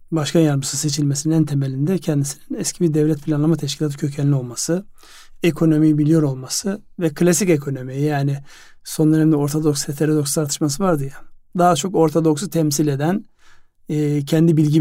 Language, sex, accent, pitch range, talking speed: Turkish, male, native, 145-165 Hz, 140 wpm